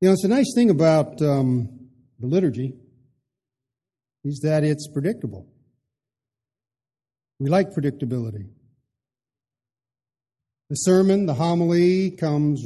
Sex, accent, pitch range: male, American, 125-155 Hz